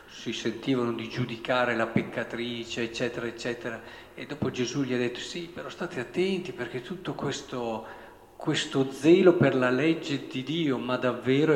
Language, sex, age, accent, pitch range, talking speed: Italian, male, 50-69, native, 125-185 Hz, 155 wpm